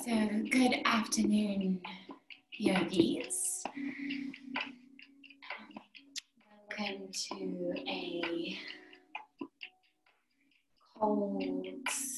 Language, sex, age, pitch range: English, female, 20-39, 195-280 Hz